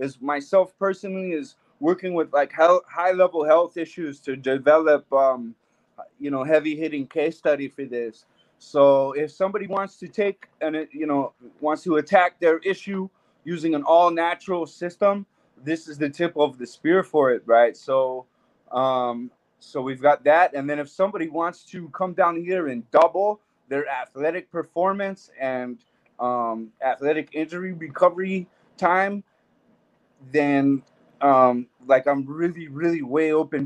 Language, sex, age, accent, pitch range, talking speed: English, male, 20-39, American, 130-170 Hz, 145 wpm